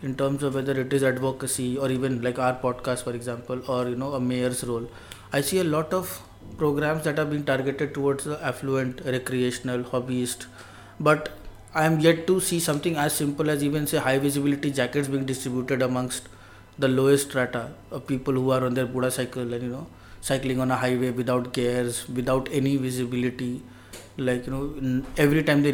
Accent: Indian